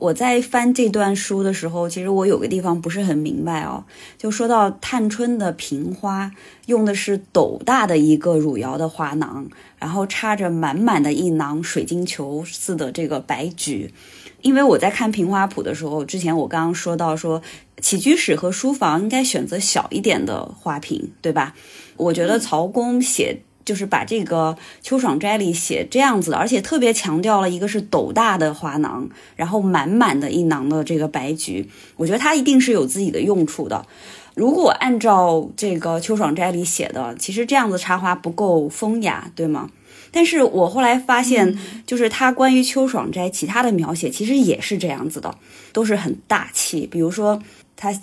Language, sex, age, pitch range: Chinese, female, 20-39, 165-225 Hz